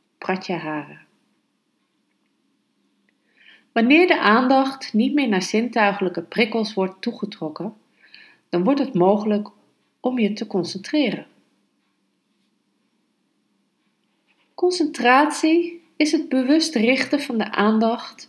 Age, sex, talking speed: 40-59, female, 95 wpm